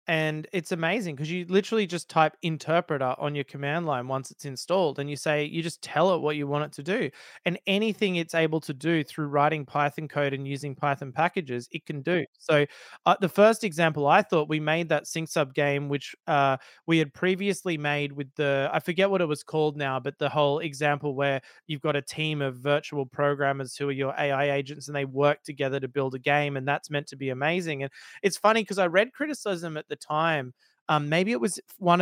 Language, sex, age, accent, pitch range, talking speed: English, male, 20-39, Australian, 145-175 Hz, 225 wpm